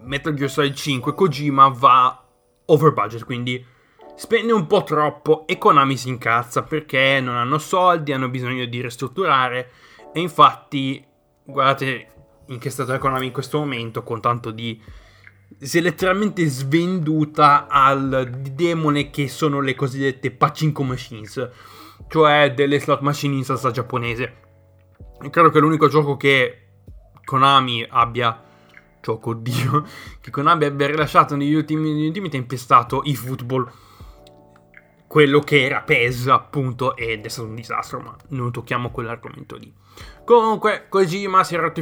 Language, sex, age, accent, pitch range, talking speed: Italian, male, 20-39, native, 125-150 Hz, 145 wpm